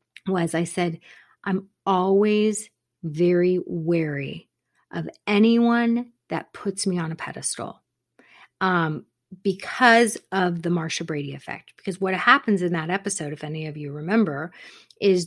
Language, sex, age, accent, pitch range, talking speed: English, female, 30-49, American, 175-220 Hz, 135 wpm